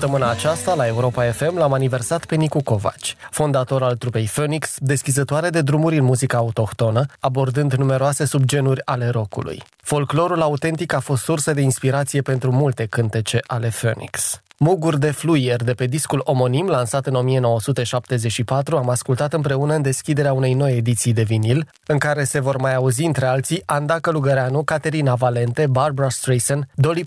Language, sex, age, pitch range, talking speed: Romanian, male, 20-39, 125-150 Hz, 160 wpm